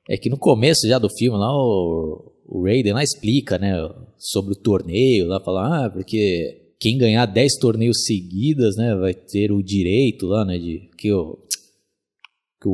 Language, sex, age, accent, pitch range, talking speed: Portuguese, male, 20-39, Brazilian, 100-125 Hz, 175 wpm